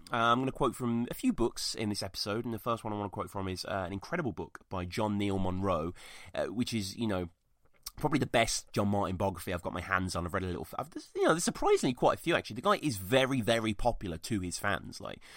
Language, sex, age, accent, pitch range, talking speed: English, male, 30-49, British, 95-120 Hz, 270 wpm